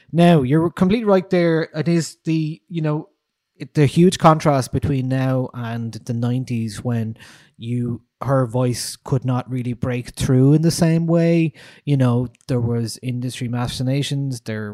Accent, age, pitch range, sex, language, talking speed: Irish, 20-39, 115-140 Hz, male, English, 155 wpm